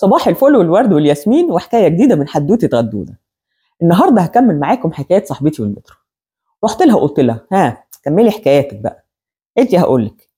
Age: 30-49